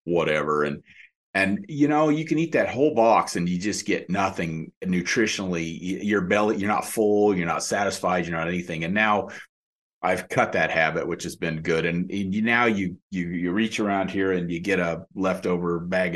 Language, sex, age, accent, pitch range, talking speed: English, male, 40-59, American, 85-110 Hz, 195 wpm